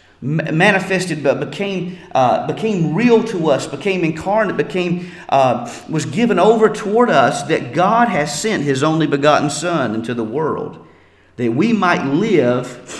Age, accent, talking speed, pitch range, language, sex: 40-59, American, 150 wpm, 155-215 Hz, English, male